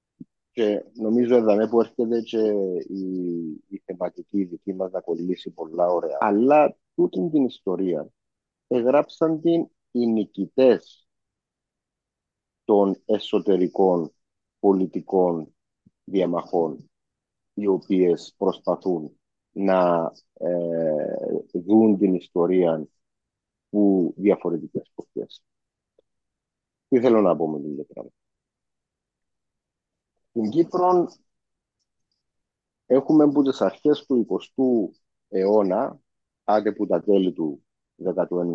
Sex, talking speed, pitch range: male, 90 wpm, 90-120 Hz